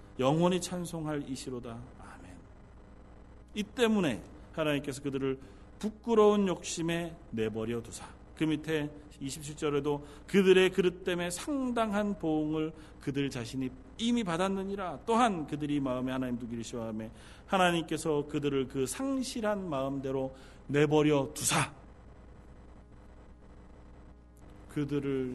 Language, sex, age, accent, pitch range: Korean, male, 40-59, native, 130-180 Hz